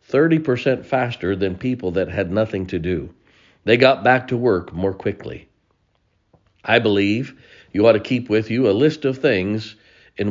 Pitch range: 95-125 Hz